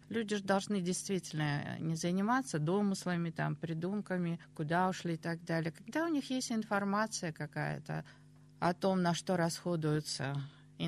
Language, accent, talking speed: Russian, native, 140 wpm